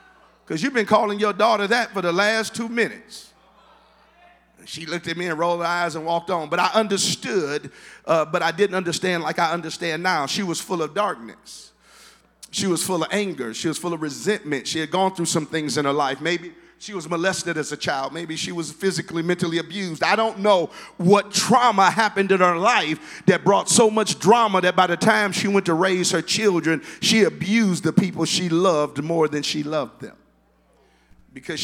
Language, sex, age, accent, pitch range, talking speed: English, male, 50-69, American, 165-205 Hz, 205 wpm